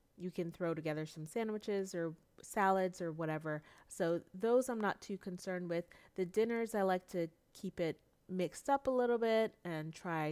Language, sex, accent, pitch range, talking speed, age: English, female, American, 165-215 Hz, 180 wpm, 30-49